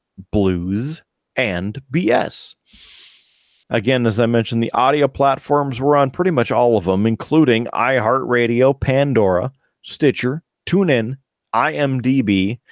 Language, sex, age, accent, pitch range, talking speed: English, male, 40-59, American, 120-160 Hz, 110 wpm